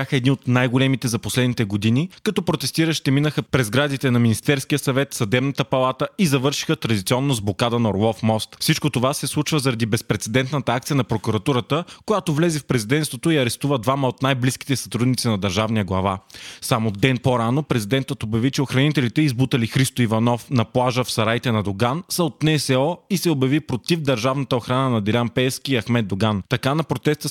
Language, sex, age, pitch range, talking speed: Bulgarian, male, 30-49, 120-145 Hz, 175 wpm